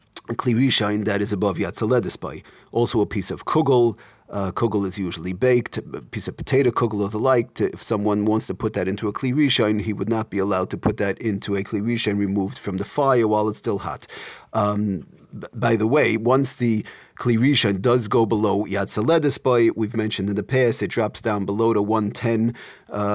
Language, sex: English, male